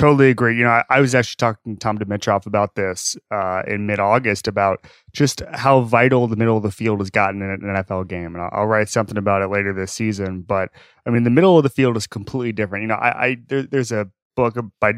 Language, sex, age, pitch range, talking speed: English, male, 20-39, 105-125 Hz, 250 wpm